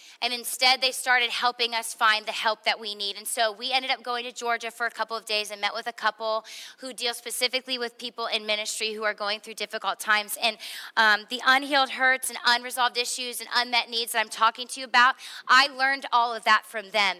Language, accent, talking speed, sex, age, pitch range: English, American, 235 wpm, female, 20-39, 215-255 Hz